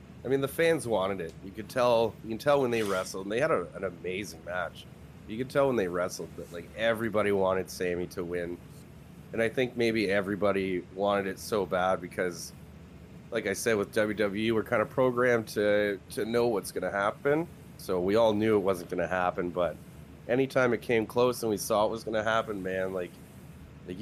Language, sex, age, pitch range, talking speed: English, male, 30-49, 90-125 Hz, 215 wpm